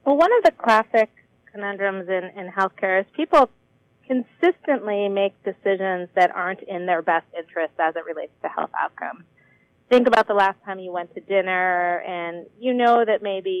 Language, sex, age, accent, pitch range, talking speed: English, female, 30-49, American, 175-225 Hz, 175 wpm